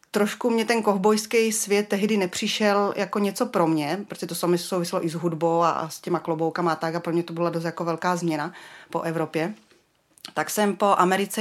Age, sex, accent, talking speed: 30-49, female, native, 215 wpm